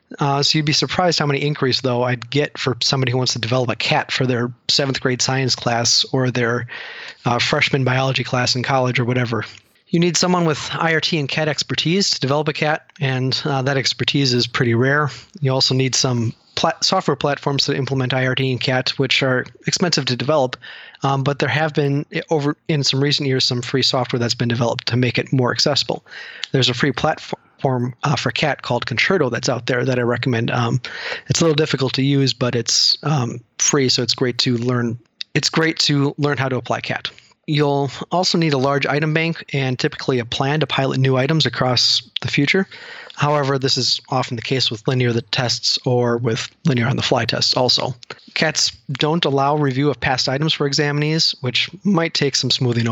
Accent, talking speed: American, 205 wpm